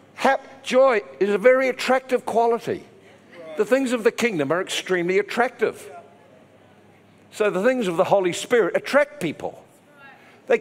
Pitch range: 200-280 Hz